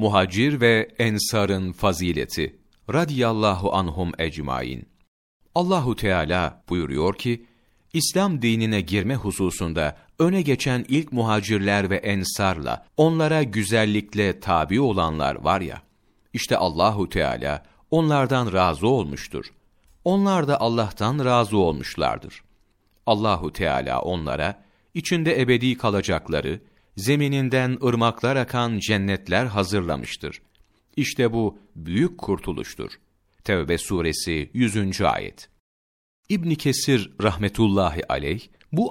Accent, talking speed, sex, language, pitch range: native, 95 wpm, male, Turkish, 95-125 Hz